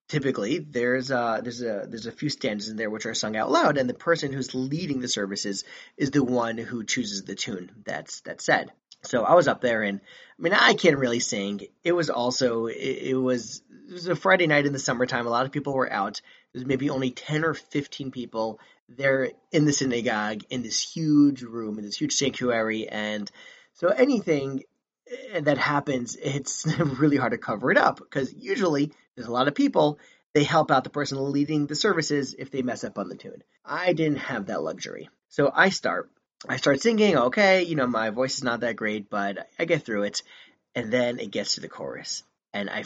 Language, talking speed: English, 215 wpm